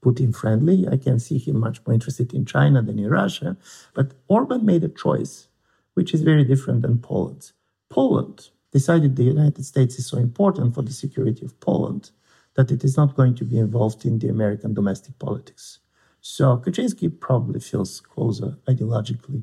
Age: 50-69